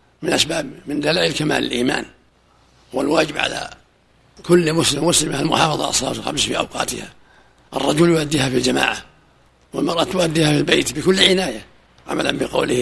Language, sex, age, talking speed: Arabic, male, 60-79, 130 wpm